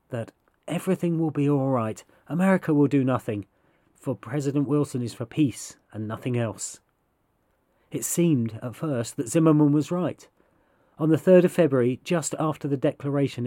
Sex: male